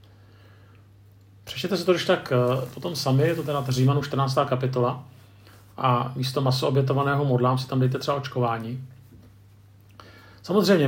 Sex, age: male, 50-69